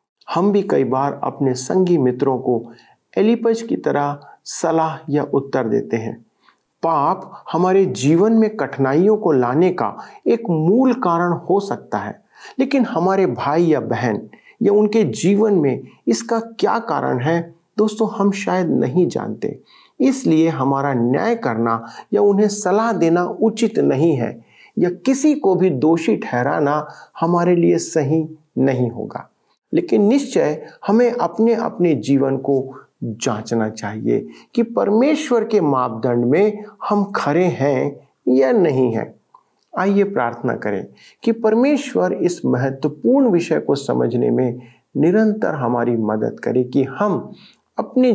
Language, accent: Hindi, native